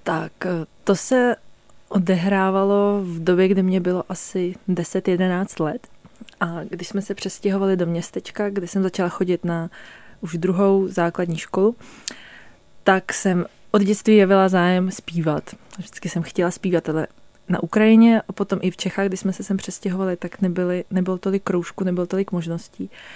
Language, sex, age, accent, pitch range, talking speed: Czech, female, 20-39, native, 175-200 Hz, 155 wpm